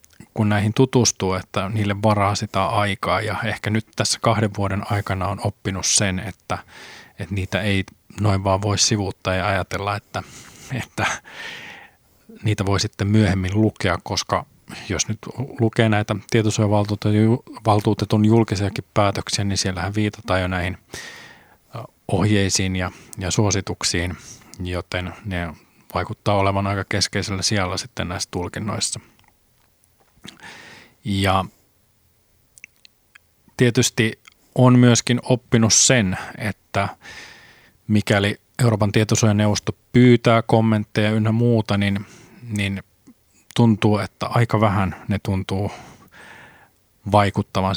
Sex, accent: male, native